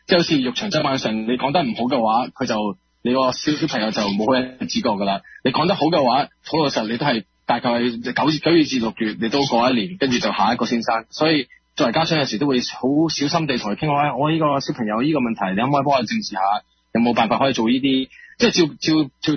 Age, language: 20-39, Chinese